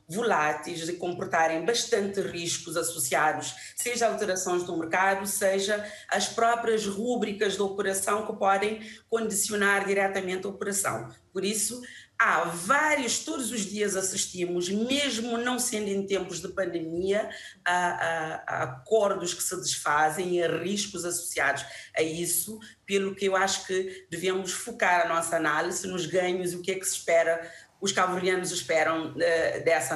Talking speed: 150 wpm